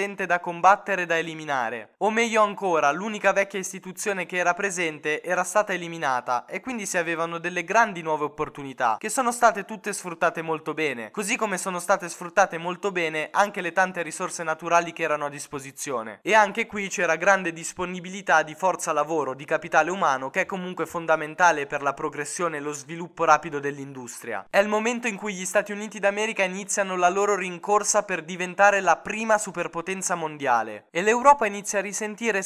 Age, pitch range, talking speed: 20-39, 160-200 Hz, 175 wpm